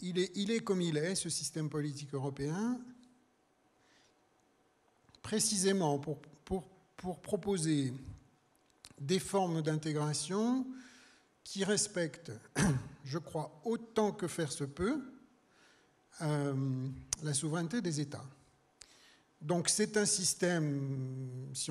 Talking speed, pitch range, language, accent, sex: 100 wpm, 135-180 Hz, French, French, male